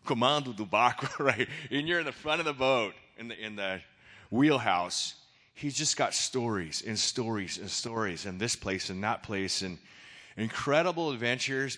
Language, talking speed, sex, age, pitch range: English, 170 wpm, male, 30-49, 100-130 Hz